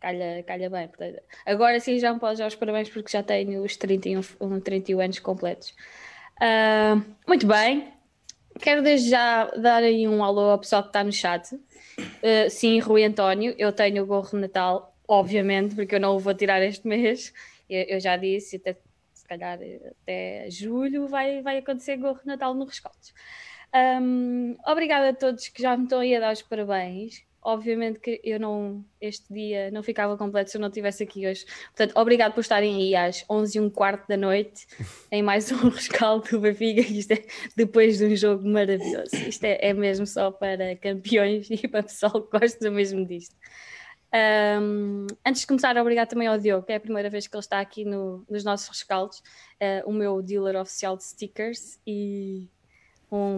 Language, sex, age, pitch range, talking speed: Portuguese, female, 20-39, 195-225 Hz, 185 wpm